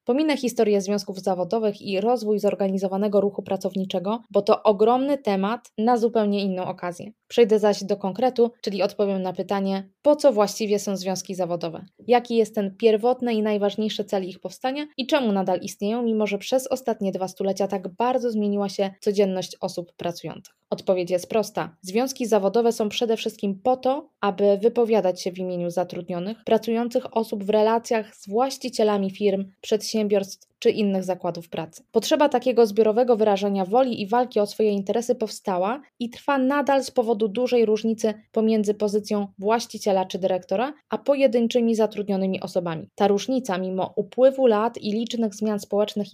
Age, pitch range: 20-39, 195-235 Hz